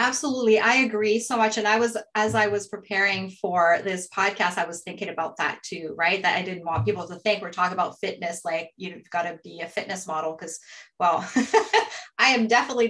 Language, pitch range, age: English, 165-215 Hz, 30-49